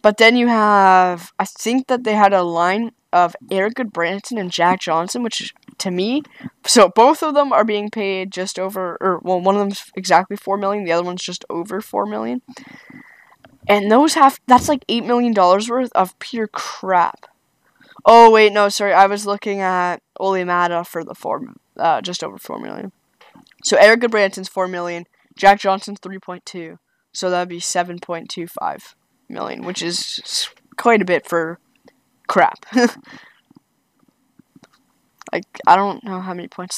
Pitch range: 180-220 Hz